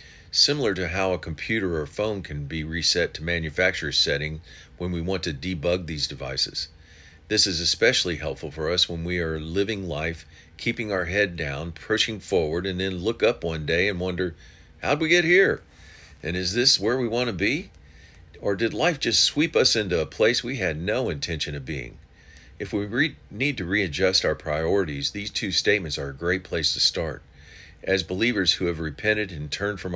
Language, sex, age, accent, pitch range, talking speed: English, male, 50-69, American, 80-95 Hz, 190 wpm